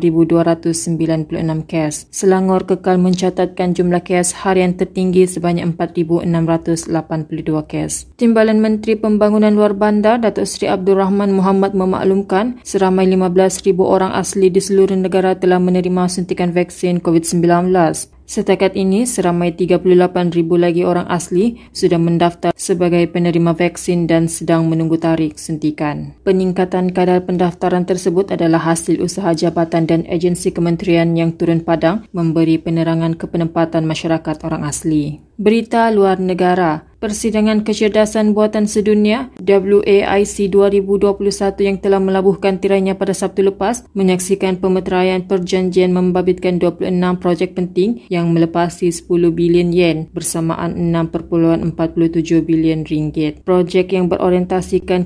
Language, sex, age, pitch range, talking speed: Malay, female, 20-39, 170-190 Hz, 120 wpm